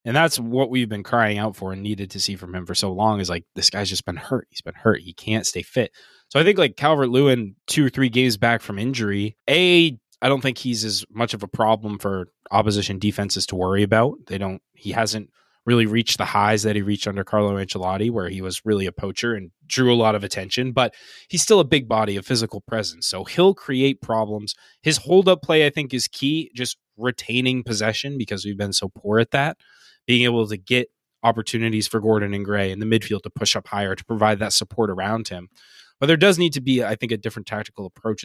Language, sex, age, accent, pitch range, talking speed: English, male, 20-39, American, 100-125 Hz, 235 wpm